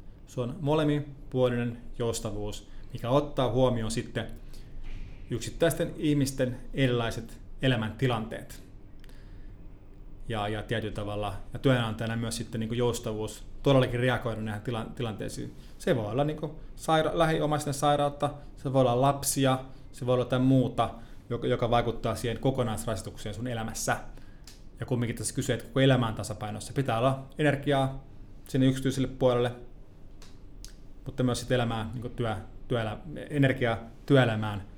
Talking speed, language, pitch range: 115 wpm, Finnish, 110-135 Hz